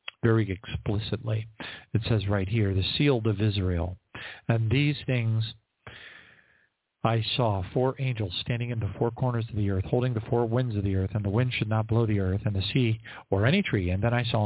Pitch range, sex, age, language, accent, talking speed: 110-145 Hz, male, 50-69, English, American, 210 wpm